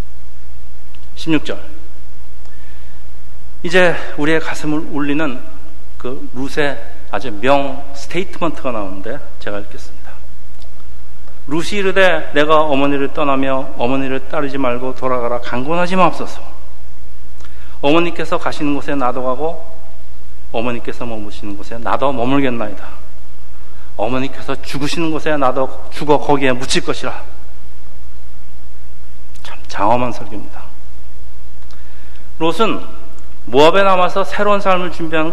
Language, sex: Korean, male